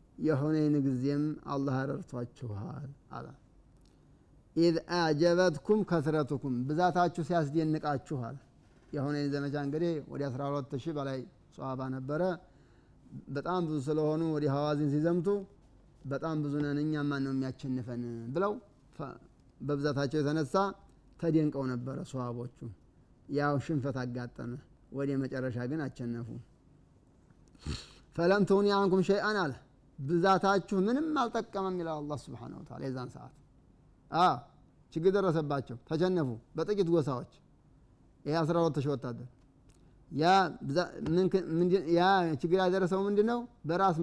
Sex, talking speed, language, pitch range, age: male, 90 wpm, Amharic, 135-175 Hz, 30-49